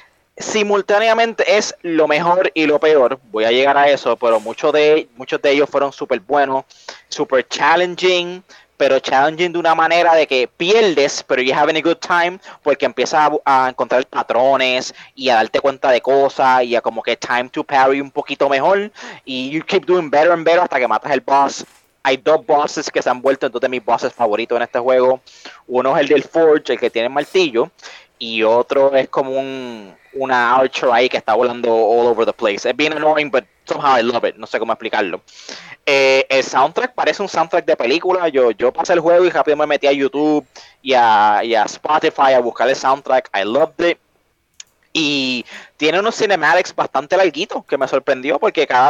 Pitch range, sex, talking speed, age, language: 130-165 Hz, male, 200 wpm, 20-39, English